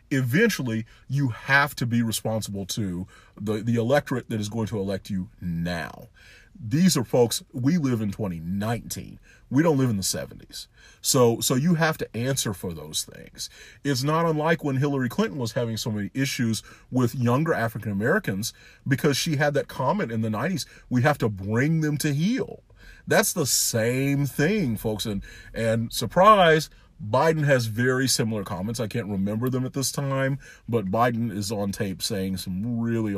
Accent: American